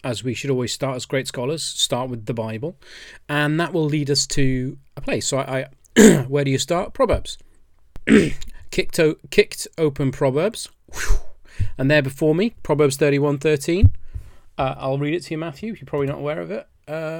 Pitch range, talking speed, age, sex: 120-155 Hz, 195 wpm, 30-49, male